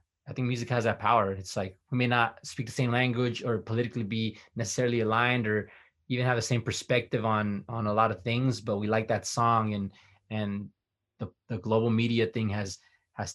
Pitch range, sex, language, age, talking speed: 100-120 Hz, male, English, 20-39, 205 wpm